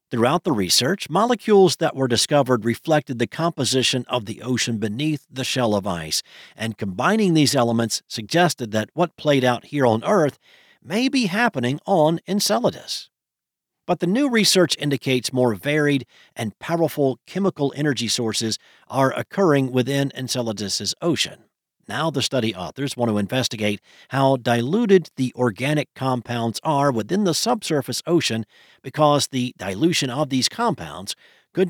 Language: English